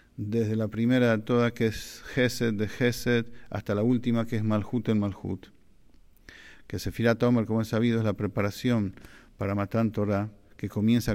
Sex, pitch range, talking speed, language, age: male, 105-120 Hz, 165 wpm, English, 50-69